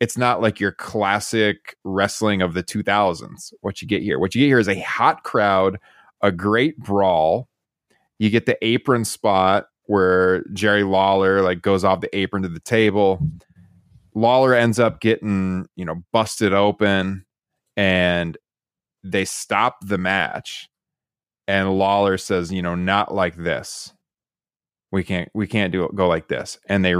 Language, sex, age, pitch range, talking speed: English, male, 20-39, 95-115 Hz, 160 wpm